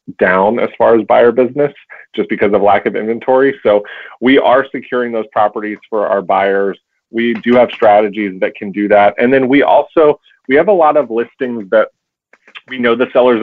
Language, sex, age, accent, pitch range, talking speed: English, male, 30-49, American, 100-120 Hz, 195 wpm